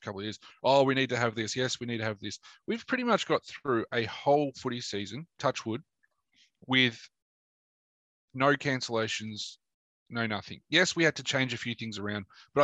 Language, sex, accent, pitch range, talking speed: English, male, Australian, 105-135 Hz, 195 wpm